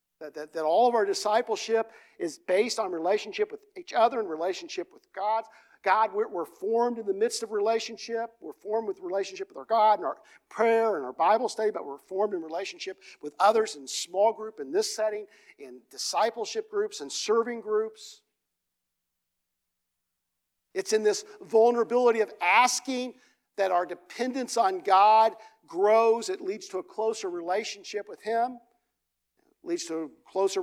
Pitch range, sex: 185-290 Hz, male